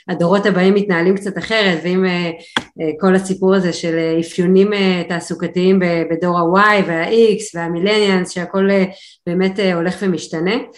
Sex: female